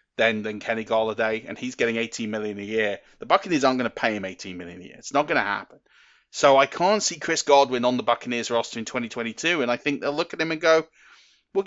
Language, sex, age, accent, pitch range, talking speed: English, male, 30-49, British, 115-140 Hz, 245 wpm